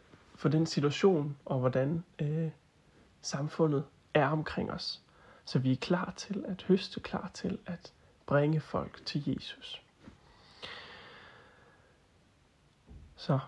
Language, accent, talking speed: Danish, native, 105 wpm